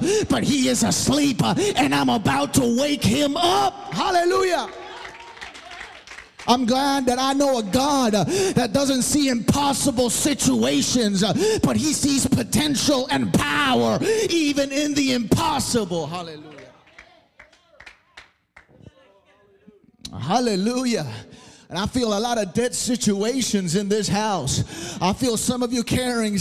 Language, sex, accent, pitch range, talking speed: English, male, American, 215-275 Hz, 125 wpm